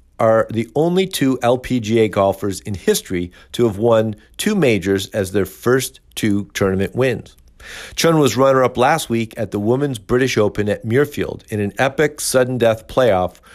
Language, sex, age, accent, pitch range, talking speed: English, male, 50-69, American, 100-135 Hz, 160 wpm